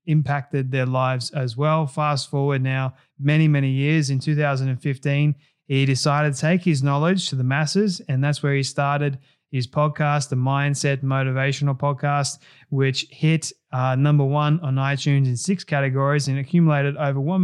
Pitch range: 135-150 Hz